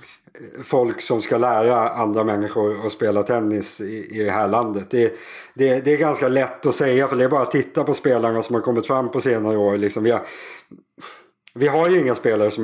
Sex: male